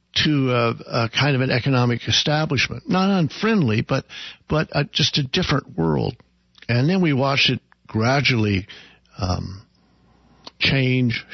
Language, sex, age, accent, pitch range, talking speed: English, male, 60-79, American, 105-140 Hz, 130 wpm